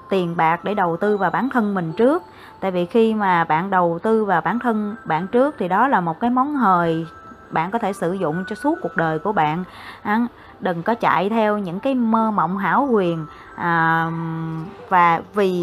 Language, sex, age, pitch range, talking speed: Vietnamese, female, 20-39, 175-235 Hz, 200 wpm